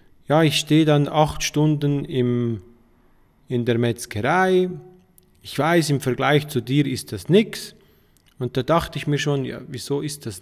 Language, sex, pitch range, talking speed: German, male, 125-150 Hz, 160 wpm